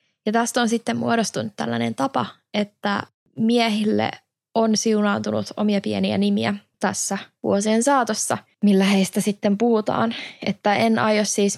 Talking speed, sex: 130 wpm, female